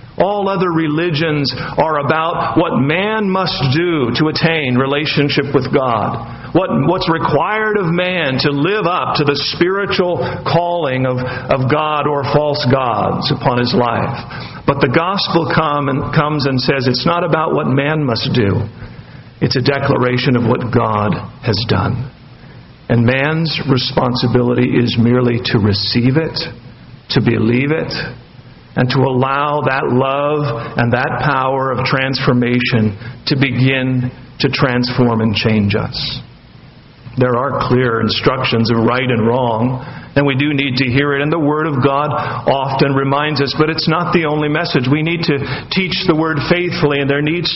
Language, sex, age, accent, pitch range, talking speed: English, male, 50-69, American, 125-160 Hz, 160 wpm